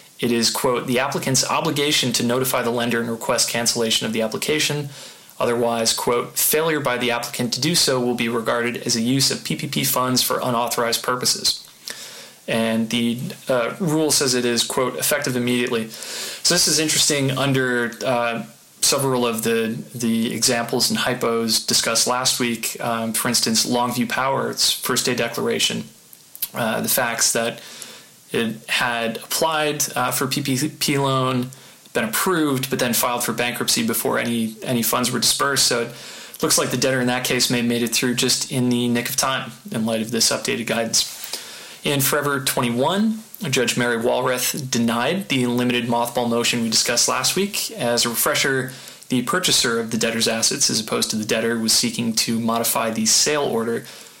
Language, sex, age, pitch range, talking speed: English, male, 20-39, 115-135 Hz, 175 wpm